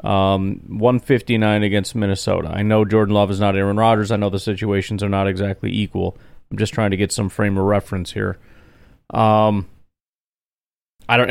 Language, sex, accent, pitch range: English, male, American, 95-115 Hz